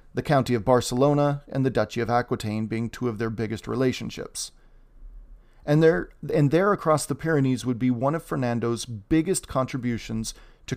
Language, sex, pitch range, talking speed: English, male, 115-140 Hz, 165 wpm